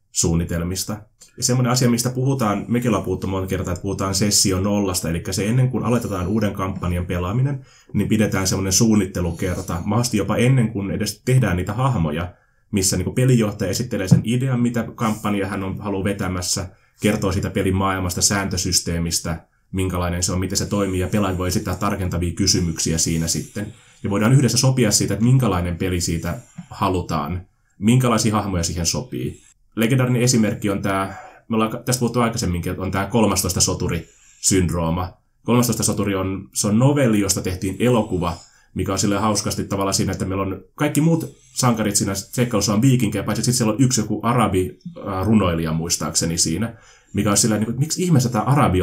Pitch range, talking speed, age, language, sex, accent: 95-115 Hz, 165 wpm, 20-39, Finnish, male, native